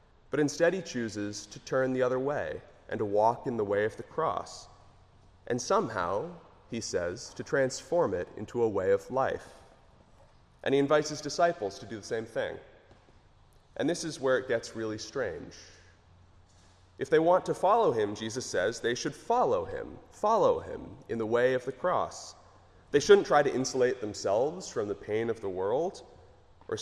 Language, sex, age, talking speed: English, male, 30-49, 180 wpm